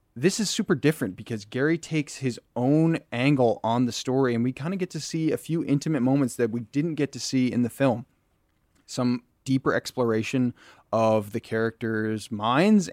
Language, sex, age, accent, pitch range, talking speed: English, male, 30-49, American, 110-135 Hz, 185 wpm